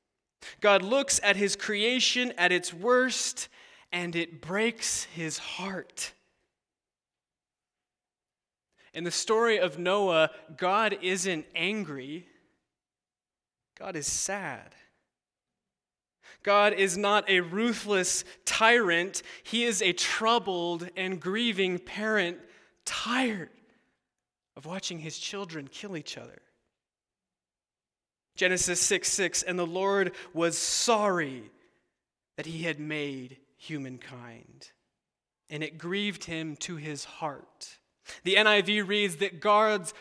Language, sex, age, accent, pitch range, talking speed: English, male, 20-39, American, 170-210 Hz, 105 wpm